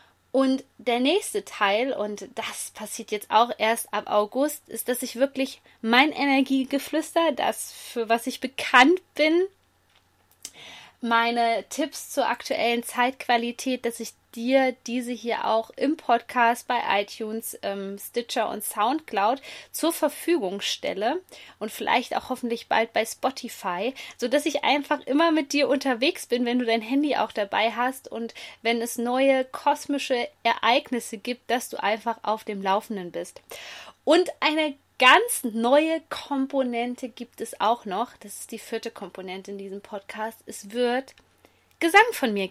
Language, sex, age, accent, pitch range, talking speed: German, female, 20-39, German, 225-275 Hz, 145 wpm